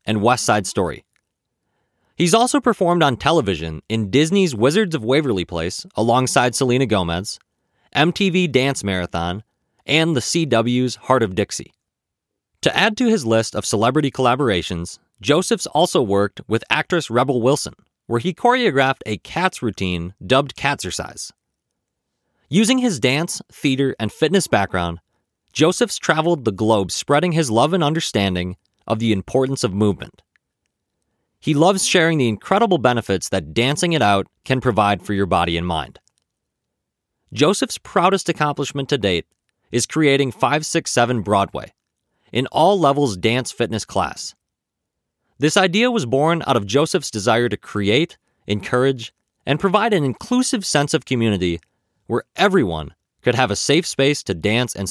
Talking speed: 145 wpm